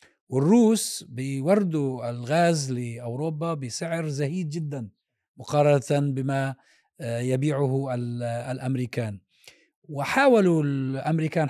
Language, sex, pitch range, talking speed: Arabic, male, 130-170 Hz, 70 wpm